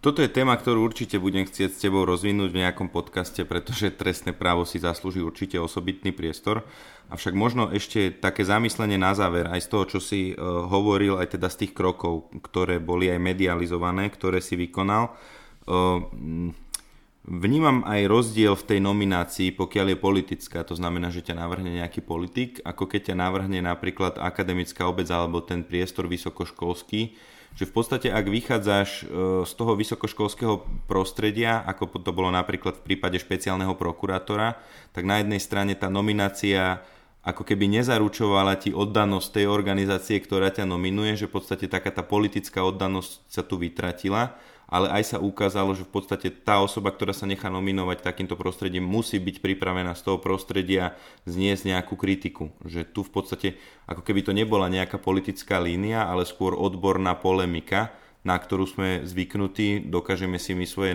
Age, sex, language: 30-49, male, Slovak